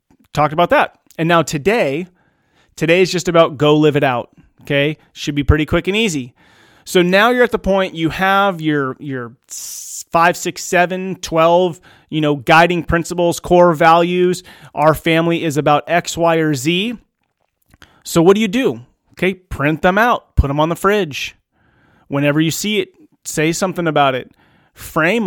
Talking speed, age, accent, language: 170 wpm, 30-49, American, English